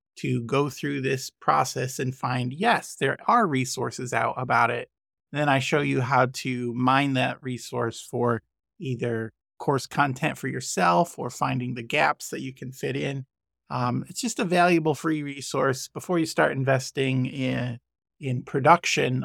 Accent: American